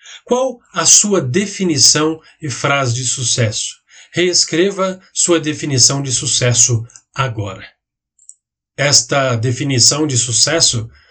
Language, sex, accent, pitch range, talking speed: Portuguese, male, Brazilian, 120-160 Hz, 95 wpm